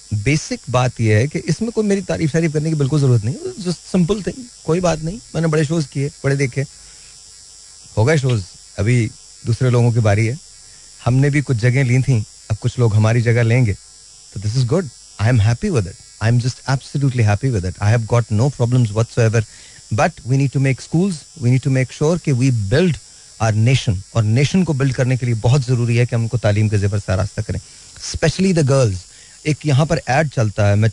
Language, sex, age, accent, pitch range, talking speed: Hindi, male, 30-49, native, 105-140 Hz, 180 wpm